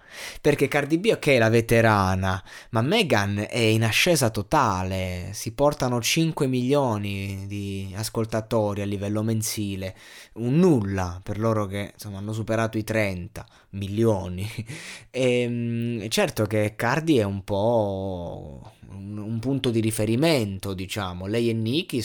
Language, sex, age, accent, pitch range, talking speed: Italian, male, 20-39, native, 110-140 Hz, 130 wpm